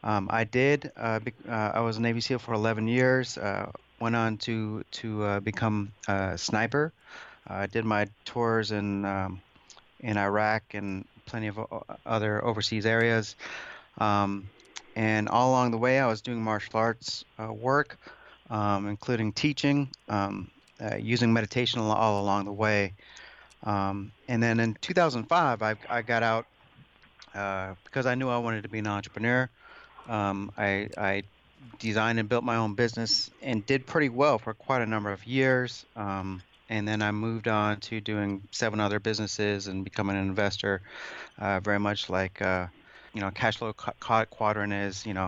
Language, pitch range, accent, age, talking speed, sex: English, 100-120 Hz, American, 30-49, 175 wpm, male